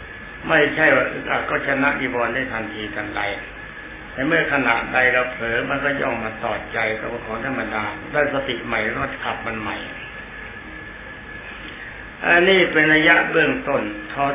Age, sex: 60-79, male